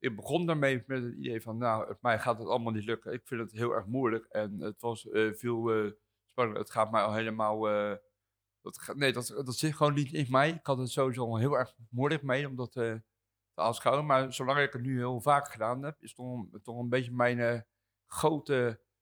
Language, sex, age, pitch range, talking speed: Dutch, male, 60-79, 110-135 Hz, 225 wpm